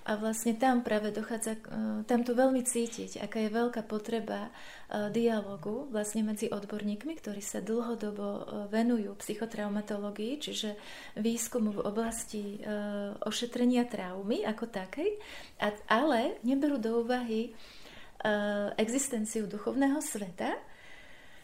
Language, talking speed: Slovak, 105 wpm